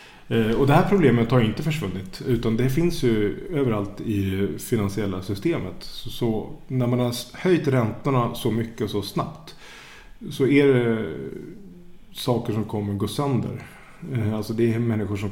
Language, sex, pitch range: English, male, 105-135 Hz